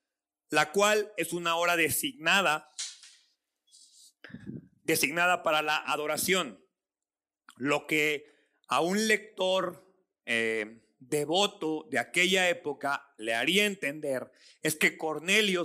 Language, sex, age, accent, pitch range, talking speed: Spanish, male, 40-59, Mexican, 140-180 Hz, 100 wpm